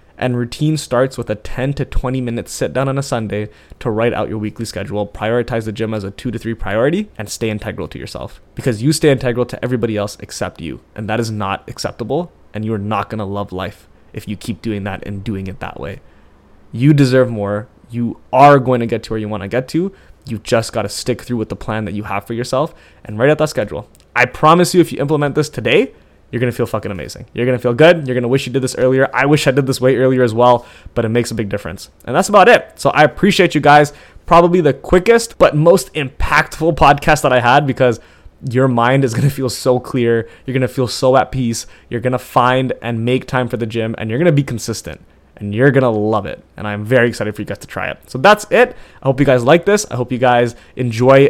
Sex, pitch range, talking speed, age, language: male, 110-140 Hz, 260 wpm, 20-39, English